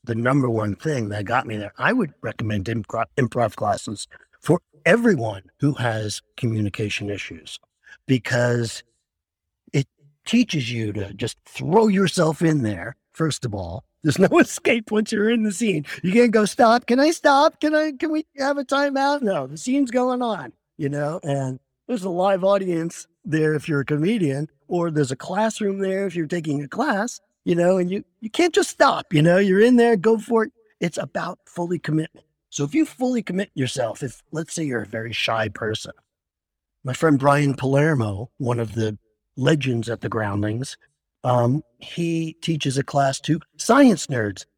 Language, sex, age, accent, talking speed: English, male, 50-69, American, 180 wpm